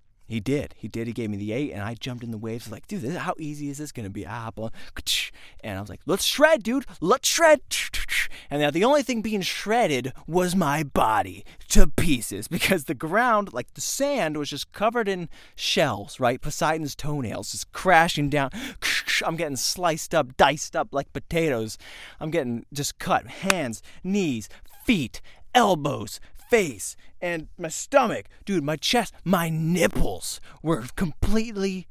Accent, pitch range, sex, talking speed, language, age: American, 120-190 Hz, male, 170 wpm, English, 20-39